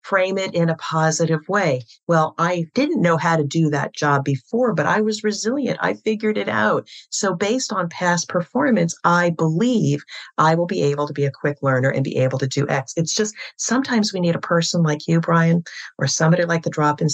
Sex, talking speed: female, 215 wpm